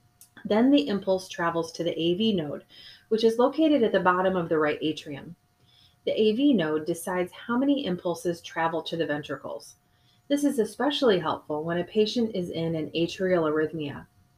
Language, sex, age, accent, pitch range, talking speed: English, female, 30-49, American, 160-205 Hz, 170 wpm